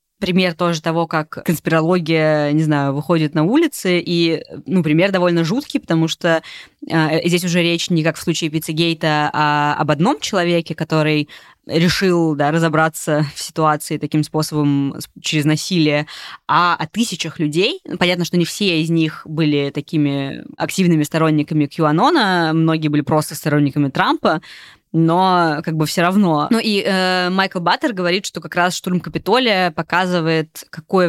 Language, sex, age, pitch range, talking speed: Russian, female, 20-39, 150-180 Hz, 145 wpm